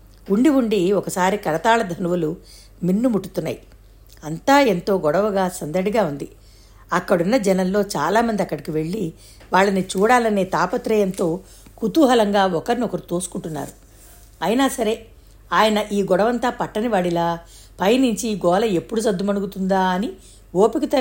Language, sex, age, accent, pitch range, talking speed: Telugu, female, 60-79, native, 165-215 Hz, 100 wpm